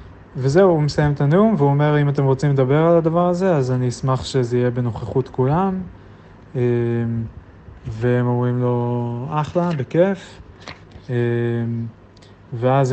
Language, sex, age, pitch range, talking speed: Hebrew, male, 30-49, 115-135 Hz, 125 wpm